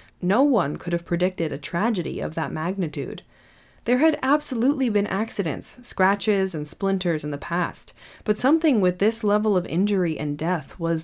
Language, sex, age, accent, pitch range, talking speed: English, female, 20-39, American, 160-215 Hz, 170 wpm